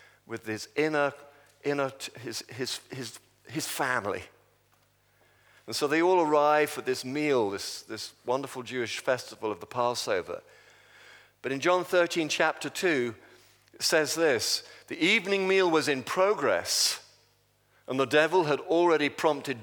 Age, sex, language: 50-69, male, English